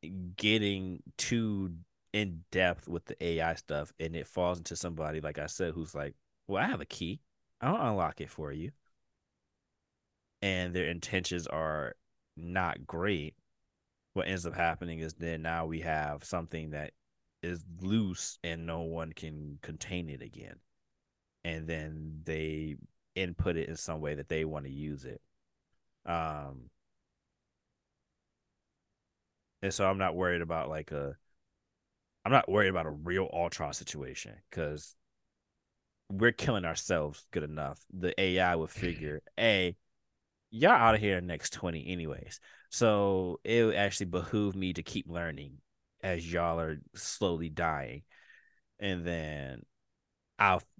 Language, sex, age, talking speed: English, male, 20-39, 140 wpm